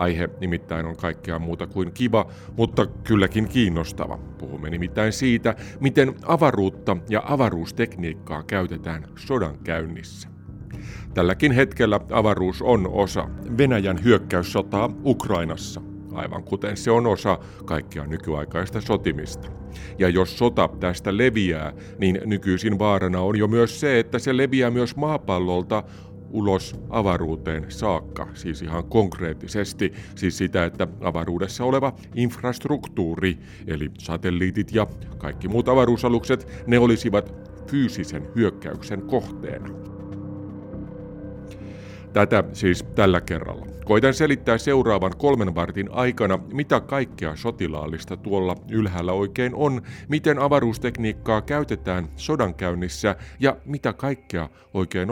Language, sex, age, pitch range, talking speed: Finnish, male, 50-69, 90-115 Hz, 110 wpm